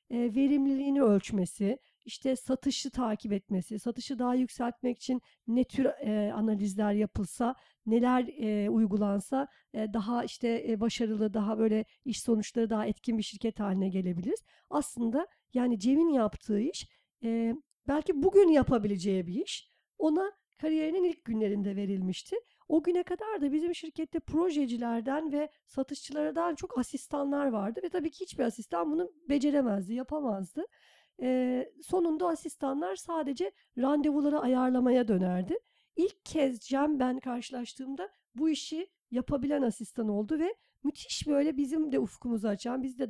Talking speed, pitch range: 125 wpm, 225-305 Hz